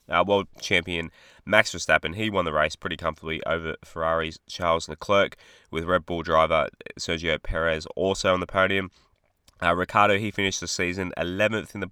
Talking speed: 170 wpm